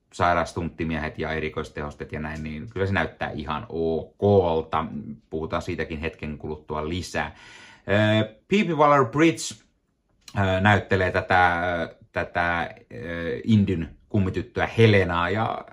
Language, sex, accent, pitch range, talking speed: Finnish, male, native, 80-110 Hz, 95 wpm